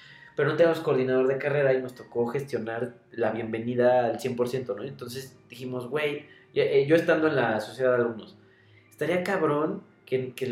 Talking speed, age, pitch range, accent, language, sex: 170 wpm, 20-39, 115-140 Hz, Mexican, Spanish, male